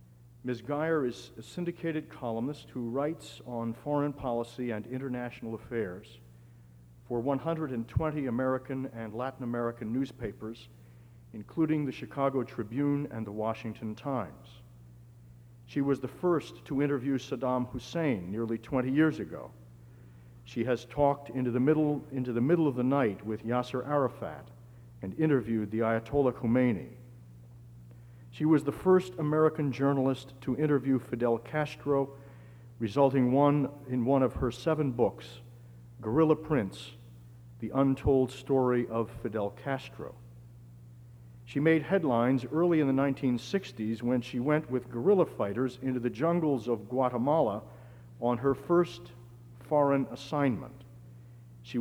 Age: 60-79